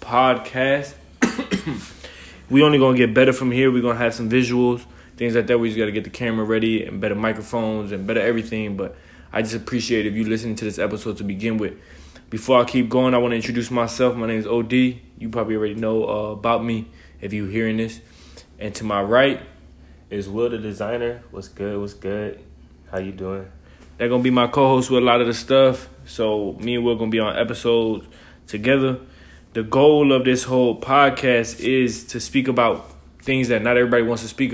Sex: male